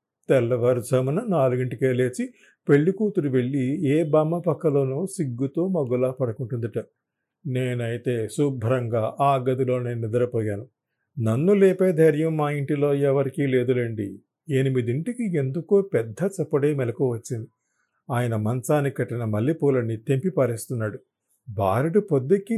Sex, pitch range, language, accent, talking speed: male, 125-170 Hz, Telugu, native, 100 wpm